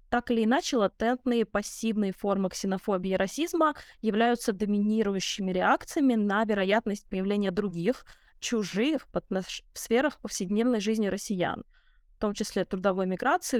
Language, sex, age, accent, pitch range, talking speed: Russian, female, 20-39, native, 195-240 Hz, 120 wpm